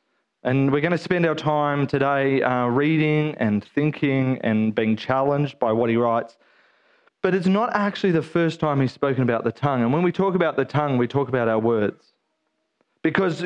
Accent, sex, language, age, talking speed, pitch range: Australian, male, English, 30-49, 195 wpm, 145-180 Hz